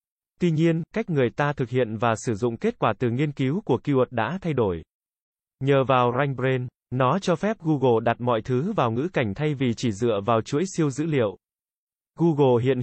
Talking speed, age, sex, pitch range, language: 205 wpm, 20-39, male, 120-160 Hz, Vietnamese